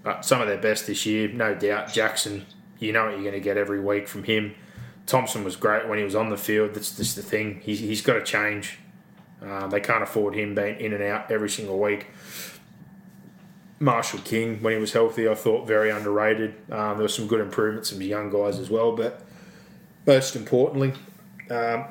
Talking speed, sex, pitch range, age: 210 wpm, male, 105-115 Hz, 20-39